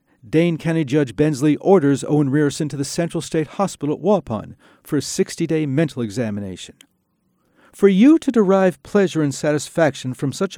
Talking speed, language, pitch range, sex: 160 wpm, English, 140-185 Hz, male